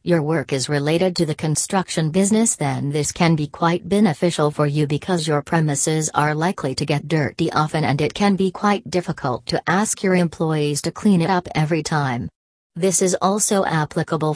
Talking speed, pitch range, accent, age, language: 190 wpm, 150-180 Hz, American, 40-59, English